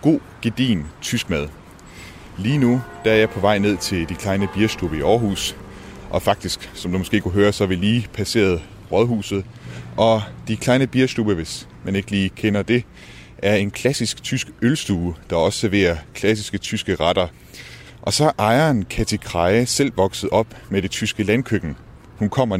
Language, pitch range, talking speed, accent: Danish, 90-115 Hz, 175 wpm, native